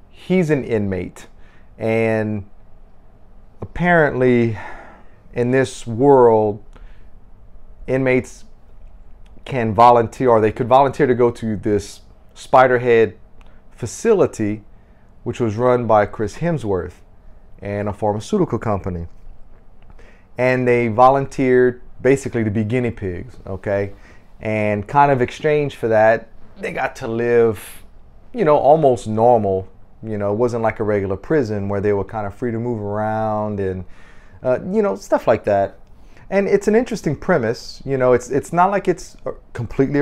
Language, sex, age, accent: English, male, 30-49, American